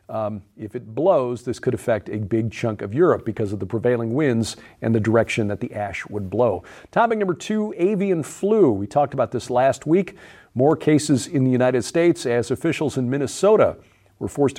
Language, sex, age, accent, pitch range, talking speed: English, male, 50-69, American, 115-140 Hz, 200 wpm